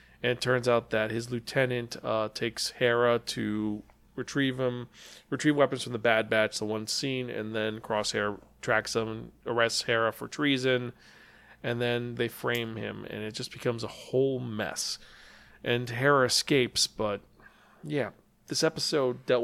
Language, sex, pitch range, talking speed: English, male, 115-140 Hz, 160 wpm